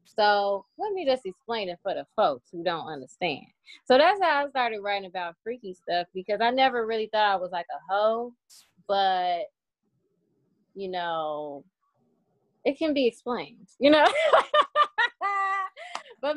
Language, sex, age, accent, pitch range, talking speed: English, female, 10-29, American, 180-255 Hz, 150 wpm